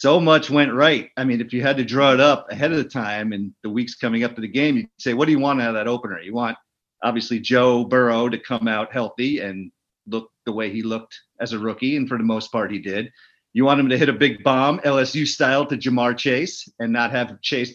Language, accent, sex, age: English, American, male, 50-69